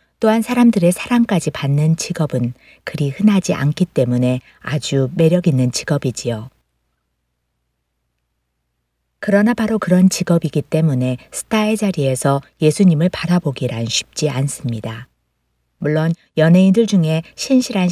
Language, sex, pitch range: Korean, female, 130-185 Hz